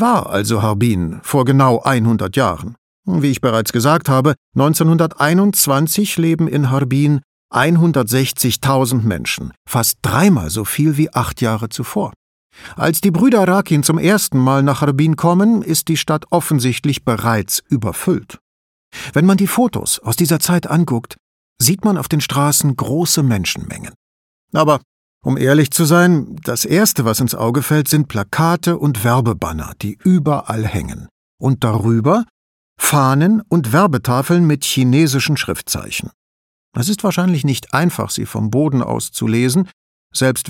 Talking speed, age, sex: 140 wpm, 50-69, male